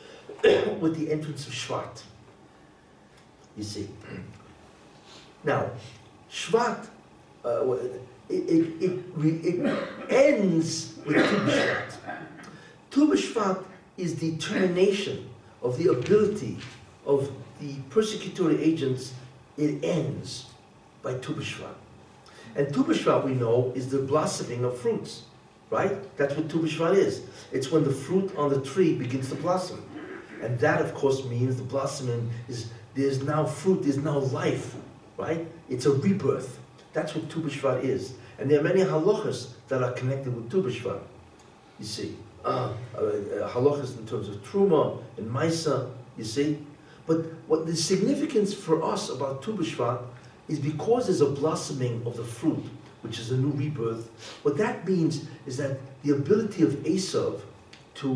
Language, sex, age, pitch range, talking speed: English, male, 60-79, 130-180 Hz, 135 wpm